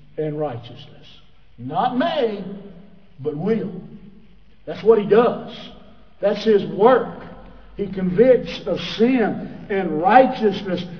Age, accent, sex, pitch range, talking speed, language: 50-69, American, male, 200-245 Hz, 105 wpm, English